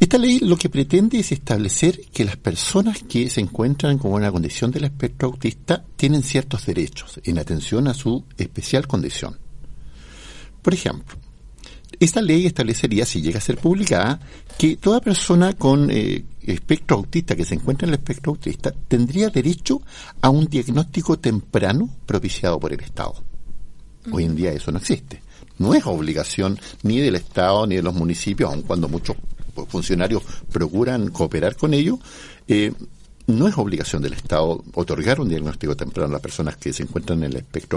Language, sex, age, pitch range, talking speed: Spanish, male, 50-69, 100-155 Hz, 165 wpm